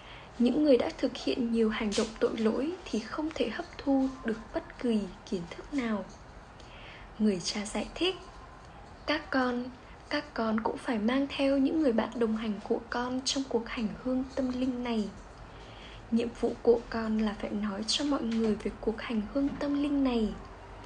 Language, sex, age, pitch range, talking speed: Vietnamese, female, 10-29, 215-260 Hz, 185 wpm